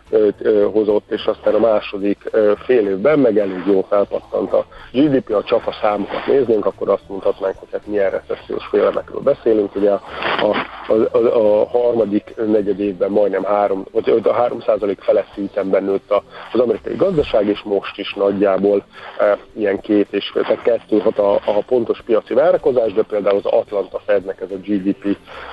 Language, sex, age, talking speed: Hungarian, male, 50-69, 165 wpm